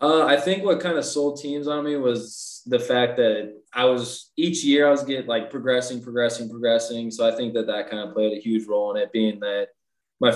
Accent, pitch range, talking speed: American, 110-125 Hz, 235 wpm